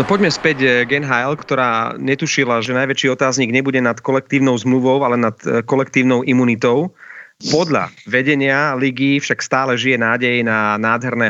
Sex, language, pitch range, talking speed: male, Slovak, 120-140 Hz, 145 wpm